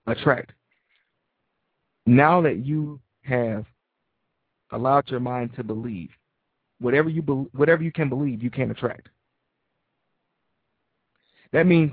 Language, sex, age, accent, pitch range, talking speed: English, male, 40-59, American, 130-165 Hz, 110 wpm